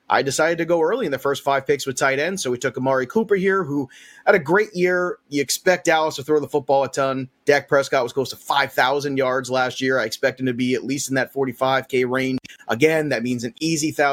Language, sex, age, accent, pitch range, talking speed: English, male, 30-49, American, 135-170 Hz, 245 wpm